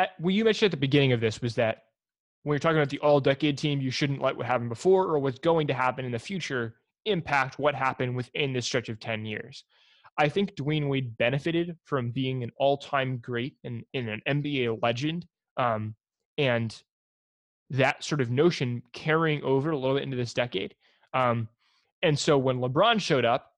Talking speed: 200 wpm